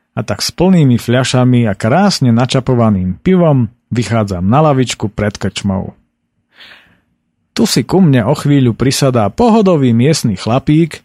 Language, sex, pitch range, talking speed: Slovak, male, 115-155 Hz, 130 wpm